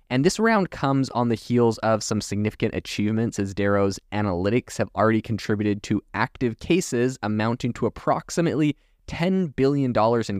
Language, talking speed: English, 150 wpm